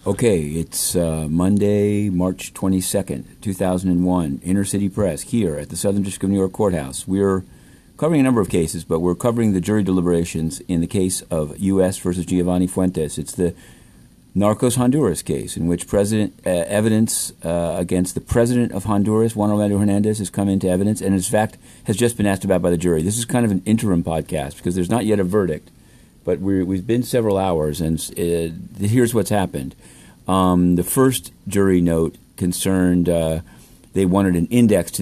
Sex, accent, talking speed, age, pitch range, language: male, American, 180 wpm, 50-69, 90-105 Hz, English